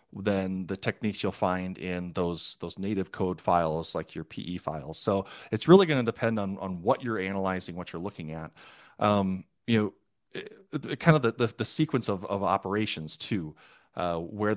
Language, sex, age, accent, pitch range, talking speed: English, male, 30-49, American, 90-110 Hz, 195 wpm